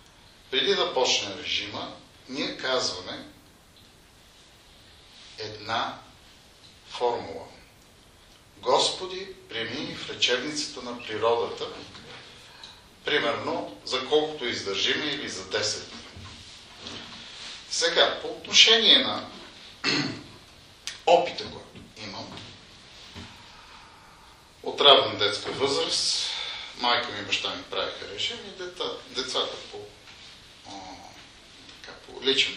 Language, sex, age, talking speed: Bulgarian, male, 50-69, 80 wpm